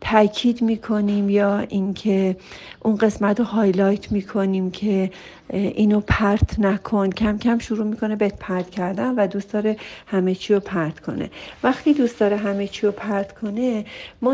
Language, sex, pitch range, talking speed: Persian, female, 195-225 Hz, 155 wpm